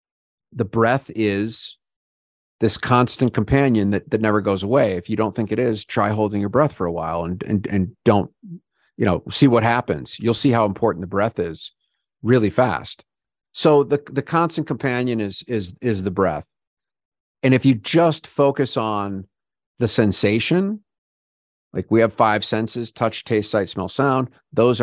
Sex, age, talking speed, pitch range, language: male, 50-69, 170 wpm, 95-120 Hz, English